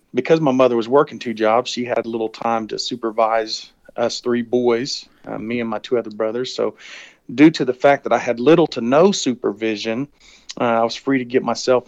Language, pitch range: English, 110-125 Hz